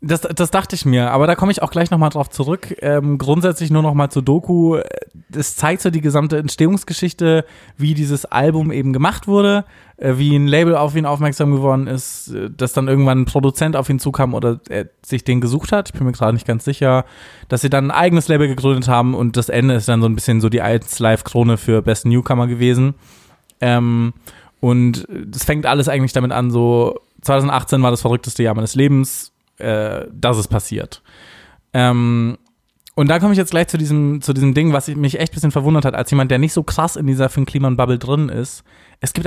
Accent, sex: German, male